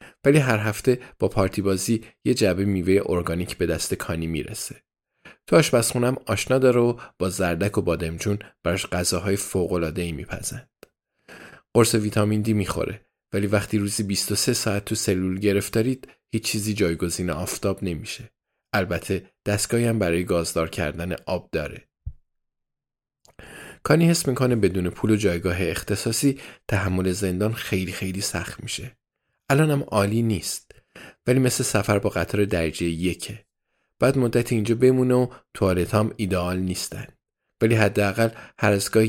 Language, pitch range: Persian, 95-115 Hz